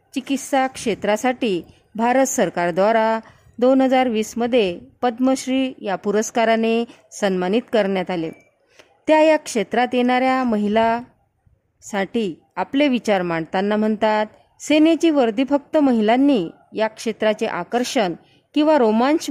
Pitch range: 200-265 Hz